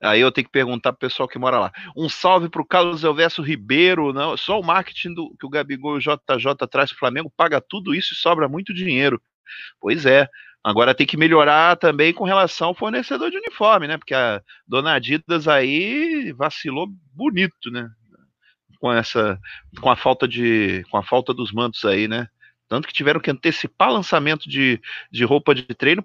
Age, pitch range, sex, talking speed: 30-49, 120-170 Hz, male, 195 wpm